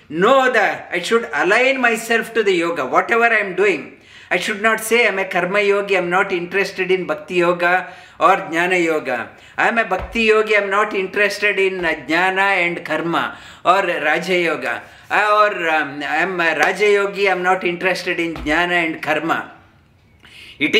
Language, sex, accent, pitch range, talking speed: English, male, Indian, 180-220 Hz, 190 wpm